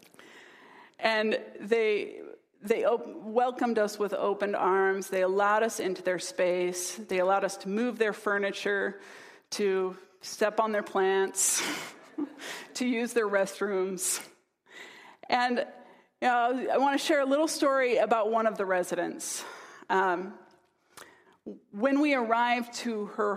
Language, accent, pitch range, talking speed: English, American, 190-260 Hz, 135 wpm